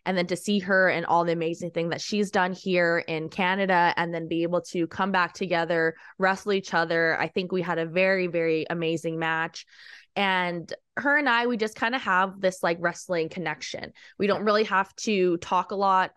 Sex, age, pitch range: female, 20-39, 165-185 Hz